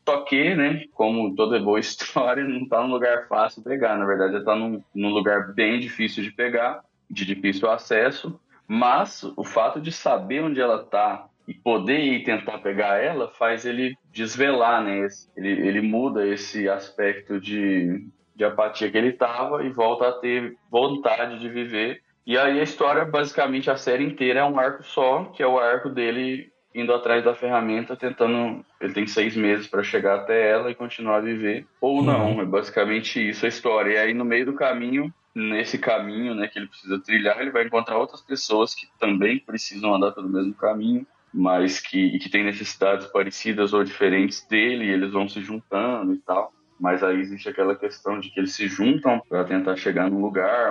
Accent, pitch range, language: Brazilian, 100-125 Hz, Portuguese